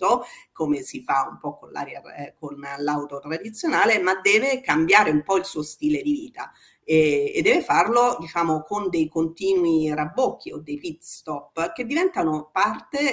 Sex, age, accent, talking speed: female, 40-59, native, 160 wpm